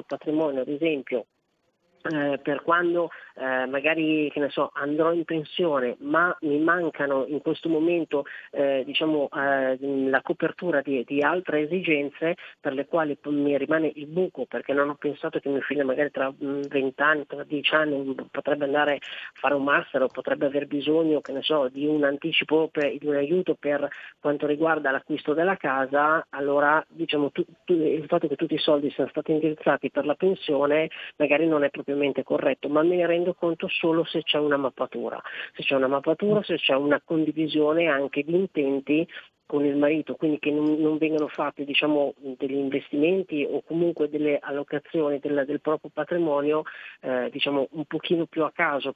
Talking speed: 180 wpm